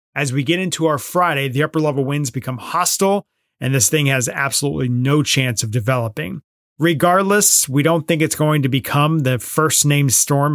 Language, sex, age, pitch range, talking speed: English, male, 30-49, 130-170 Hz, 175 wpm